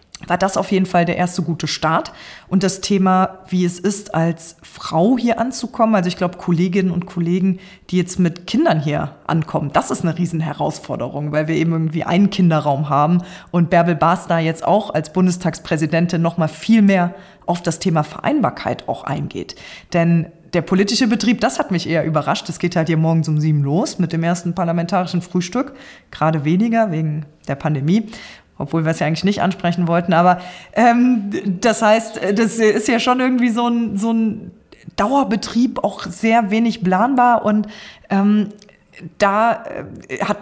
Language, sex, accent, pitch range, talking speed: German, female, German, 165-210 Hz, 175 wpm